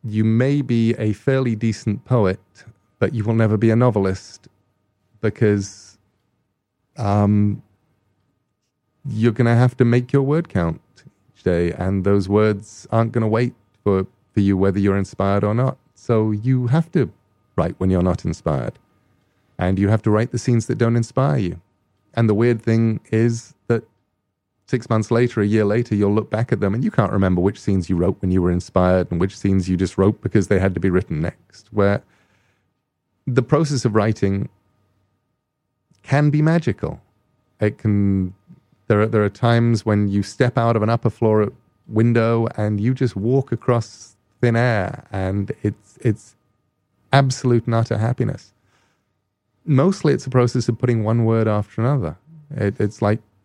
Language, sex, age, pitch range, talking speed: English, male, 30-49, 100-120 Hz, 170 wpm